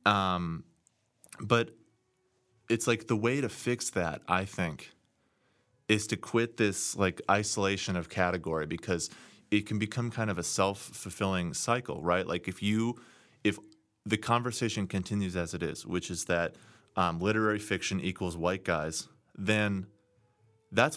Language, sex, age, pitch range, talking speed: English, male, 30-49, 90-110 Hz, 145 wpm